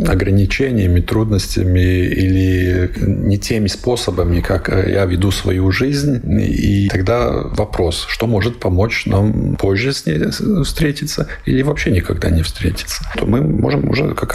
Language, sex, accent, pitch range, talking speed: Russian, male, native, 95-115 Hz, 135 wpm